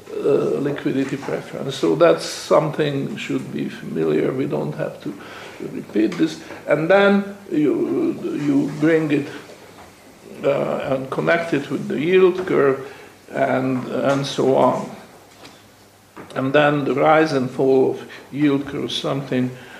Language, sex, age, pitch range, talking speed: English, male, 60-79, 140-215 Hz, 135 wpm